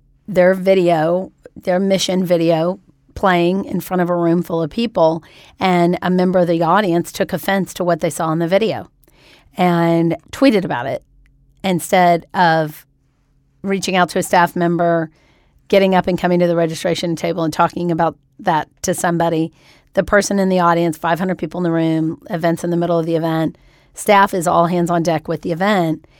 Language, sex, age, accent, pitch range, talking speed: English, female, 40-59, American, 165-185 Hz, 185 wpm